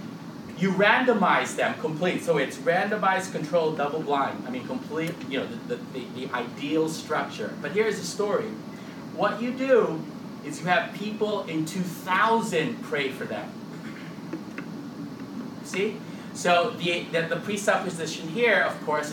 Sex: male